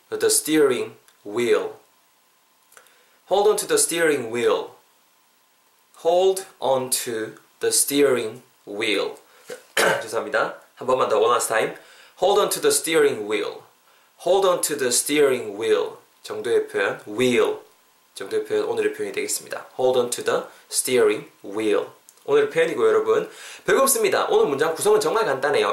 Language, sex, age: Korean, male, 20-39